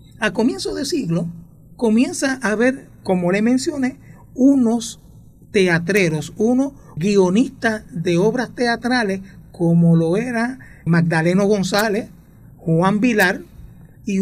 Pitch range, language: 155-220 Hz, Spanish